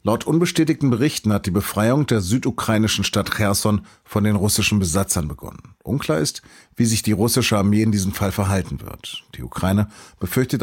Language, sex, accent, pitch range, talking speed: German, male, German, 100-115 Hz, 170 wpm